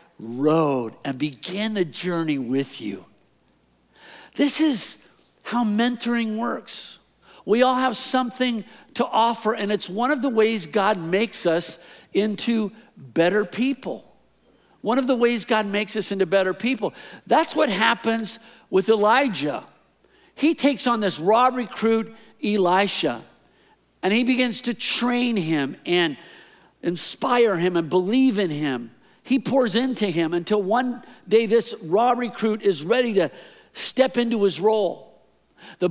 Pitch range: 180-240 Hz